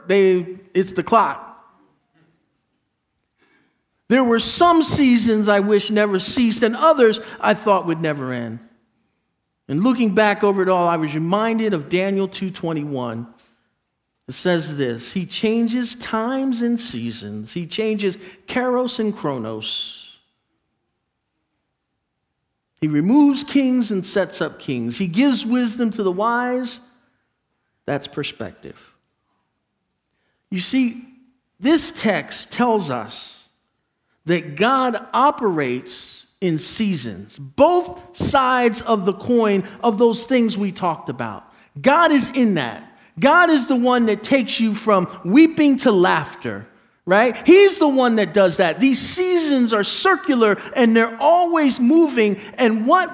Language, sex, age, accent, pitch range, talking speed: English, male, 50-69, American, 185-260 Hz, 130 wpm